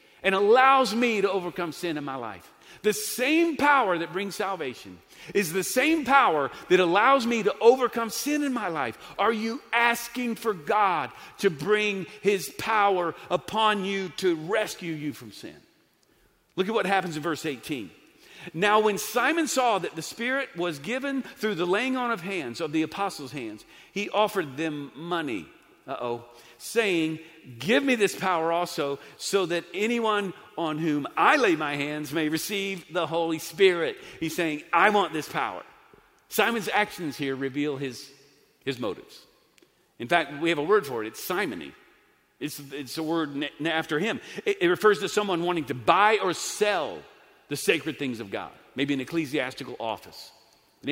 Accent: American